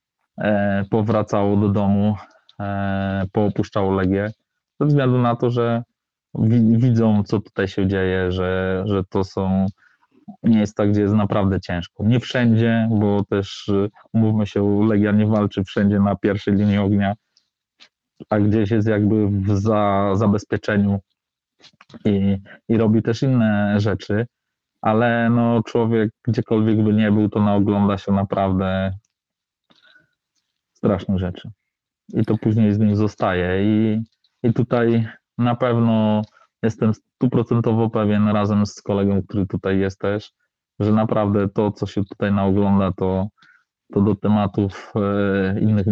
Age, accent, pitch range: 20-39, native, 100-110 Hz